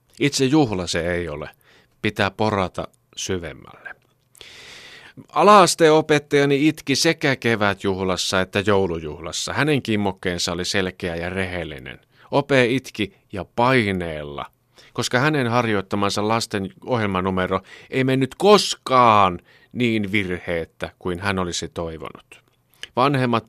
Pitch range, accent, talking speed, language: 90-130 Hz, native, 100 wpm, Finnish